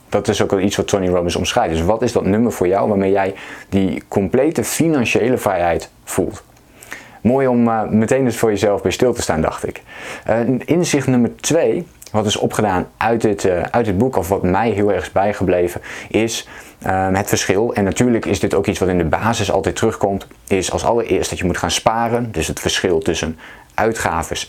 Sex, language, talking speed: male, Dutch, 200 wpm